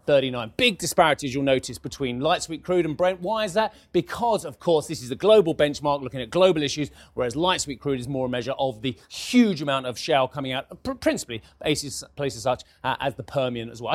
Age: 30-49